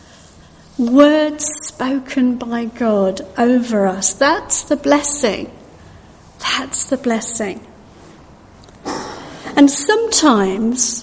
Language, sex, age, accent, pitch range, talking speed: English, female, 50-69, British, 225-280 Hz, 75 wpm